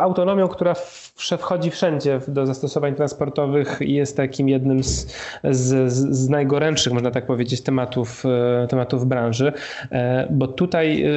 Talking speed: 125 wpm